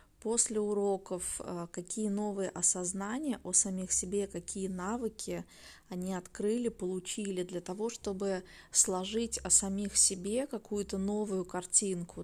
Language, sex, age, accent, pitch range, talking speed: Russian, female, 20-39, native, 180-210 Hz, 115 wpm